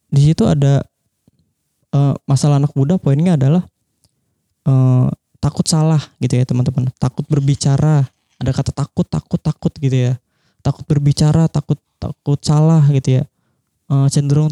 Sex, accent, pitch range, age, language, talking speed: male, native, 135-155 Hz, 20-39, Indonesian, 135 wpm